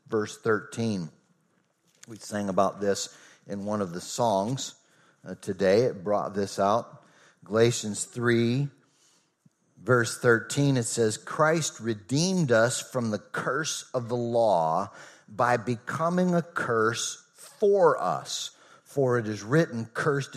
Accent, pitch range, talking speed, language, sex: American, 110-145 Hz, 125 wpm, English, male